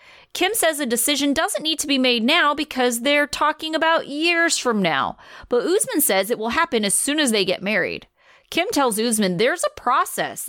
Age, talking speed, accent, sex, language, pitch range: 30-49, 200 wpm, American, female, English, 190-305 Hz